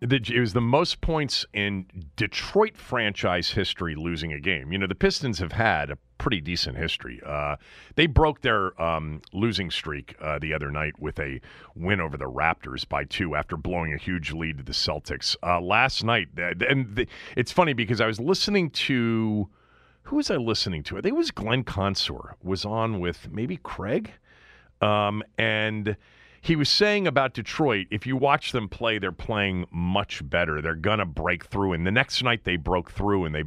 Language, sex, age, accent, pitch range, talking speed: English, male, 40-59, American, 90-130 Hz, 190 wpm